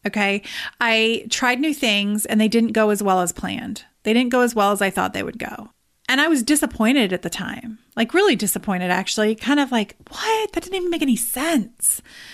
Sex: female